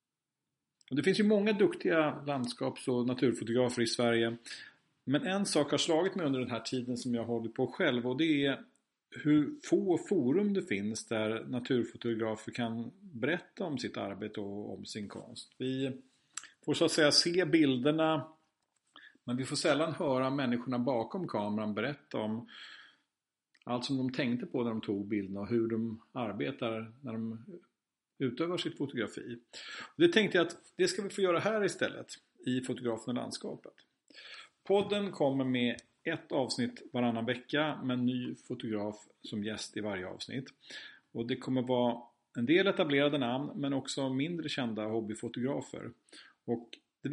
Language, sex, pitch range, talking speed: Swedish, male, 115-155 Hz, 160 wpm